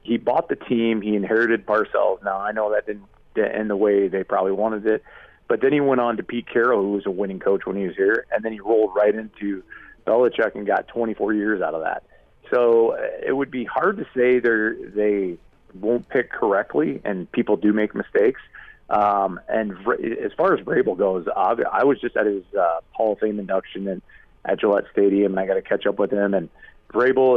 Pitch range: 100-120 Hz